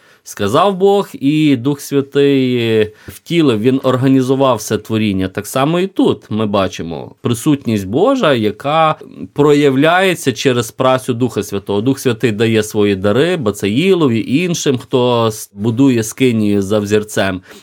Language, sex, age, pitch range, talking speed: Ukrainian, male, 30-49, 105-140 Hz, 125 wpm